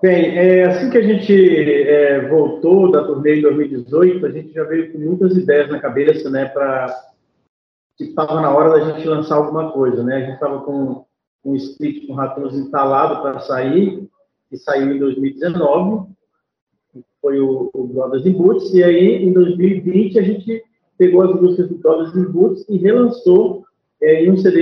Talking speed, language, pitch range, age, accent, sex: 175 wpm, English, 150-185 Hz, 40-59, Brazilian, male